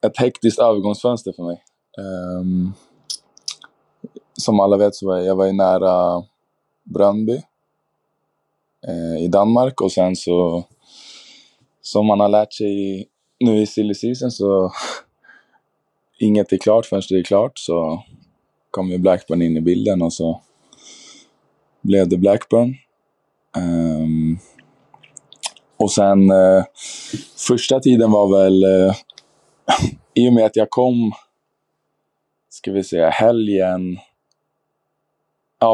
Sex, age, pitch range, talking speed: male, 20-39, 90-105 Hz, 120 wpm